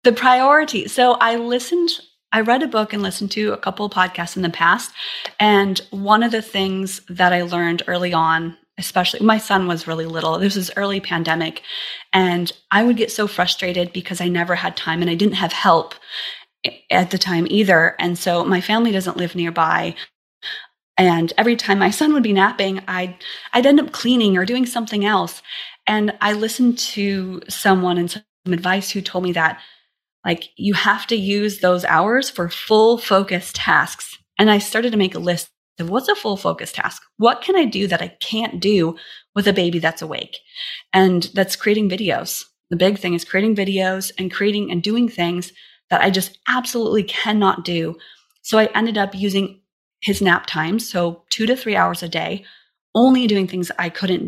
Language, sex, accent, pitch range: English, female, American, 175-215 Hz